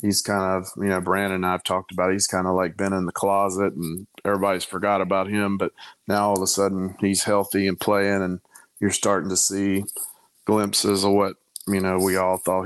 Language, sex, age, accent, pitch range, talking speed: English, male, 30-49, American, 95-105 Hz, 230 wpm